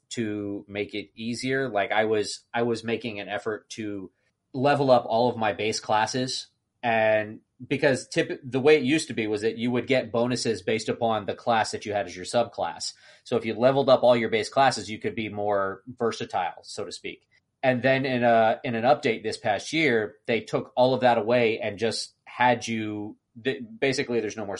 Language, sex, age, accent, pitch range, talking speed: English, male, 30-49, American, 110-130 Hz, 205 wpm